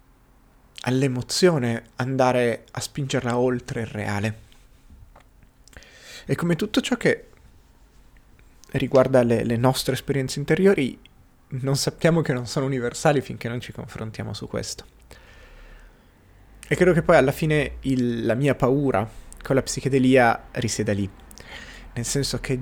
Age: 30-49